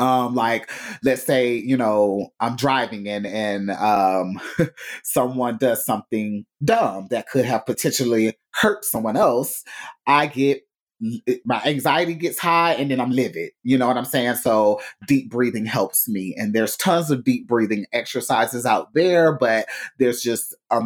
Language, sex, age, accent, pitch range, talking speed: English, male, 30-49, American, 105-130 Hz, 160 wpm